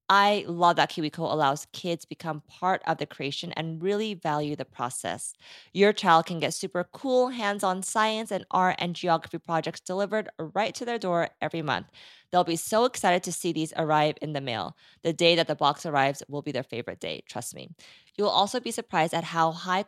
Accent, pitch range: American, 155-205 Hz